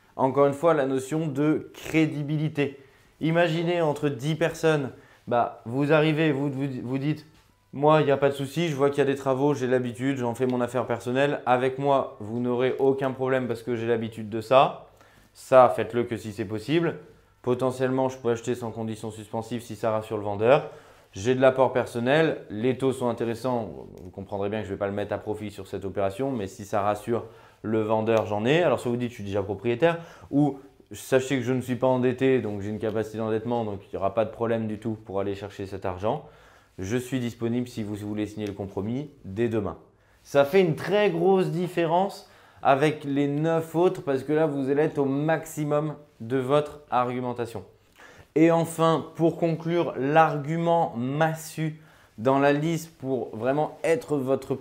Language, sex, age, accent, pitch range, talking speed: French, male, 20-39, French, 110-150 Hz, 200 wpm